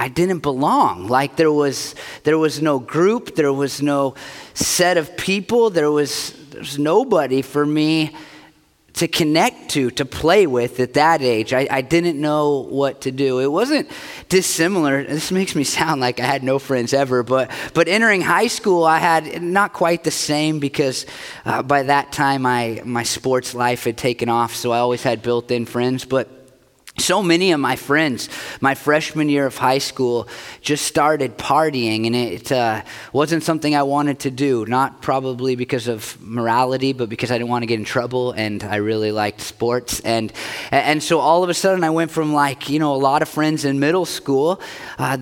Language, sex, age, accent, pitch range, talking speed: English, male, 30-49, American, 125-160 Hz, 190 wpm